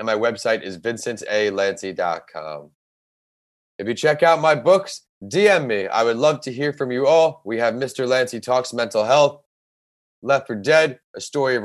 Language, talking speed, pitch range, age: English, 175 wpm, 110-140 Hz, 30-49